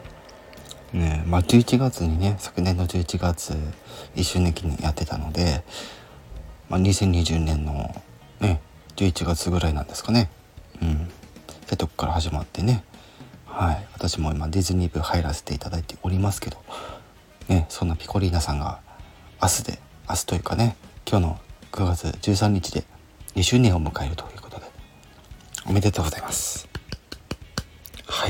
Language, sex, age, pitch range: Japanese, male, 40-59, 80-100 Hz